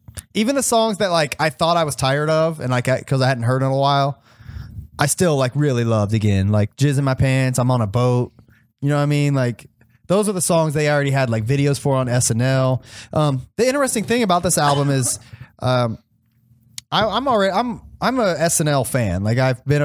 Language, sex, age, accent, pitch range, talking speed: English, male, 20-39, American, 120-155 Hz, 225 wpm